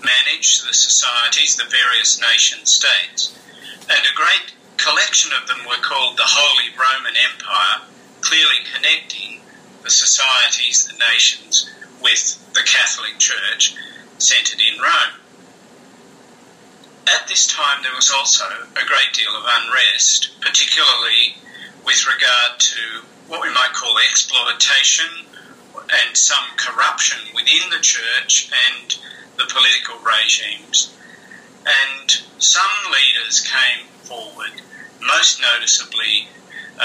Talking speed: 115 wpm